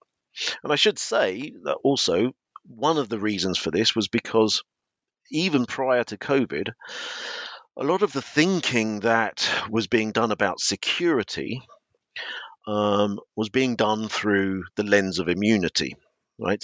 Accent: British